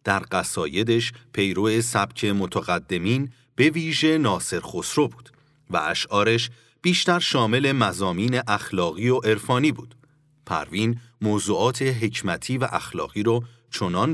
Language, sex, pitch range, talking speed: Persian, male, 105-140 Hz, 110 wpm